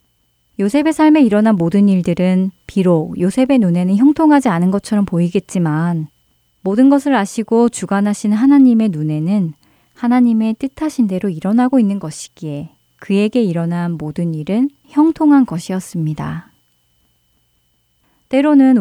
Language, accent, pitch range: Korean, native, 165-225 Hz